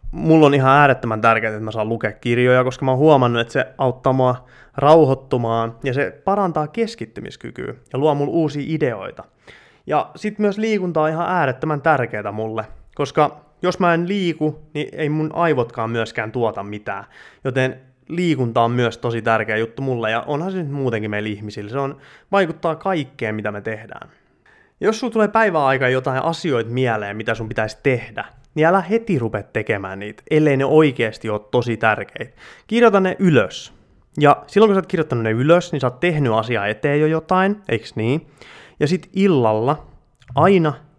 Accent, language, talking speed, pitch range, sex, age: native, Finnish, 170 wpm, 115-155 Hz, male, 20-39